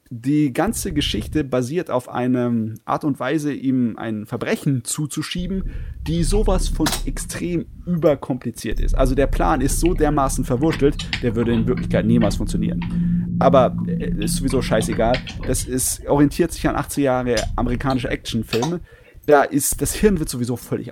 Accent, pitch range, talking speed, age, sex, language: German, 120-155 Hz, 150 wpm, 30-49, male, German